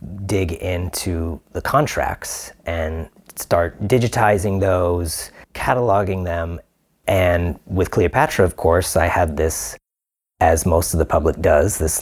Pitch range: 80-100 Hz